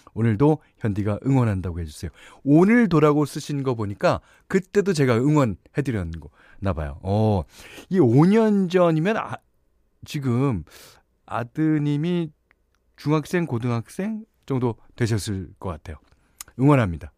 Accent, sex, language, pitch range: native, male, Korean, 100-150 Hz